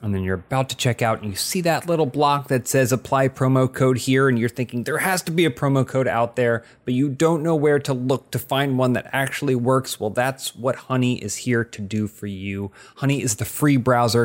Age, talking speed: 30-49, 250 wpm